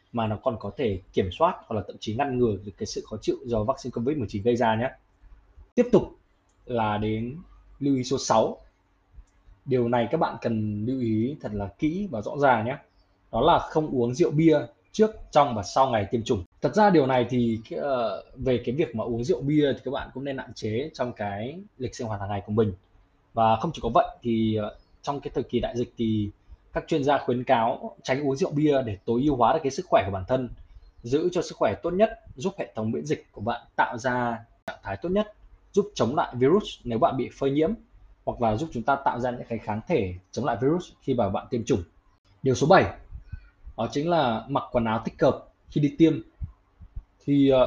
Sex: male